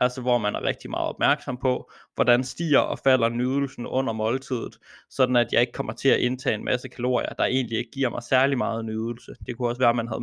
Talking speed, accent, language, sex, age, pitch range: 240 wpm, native, Danish, male, 20-39, 115-130 Hz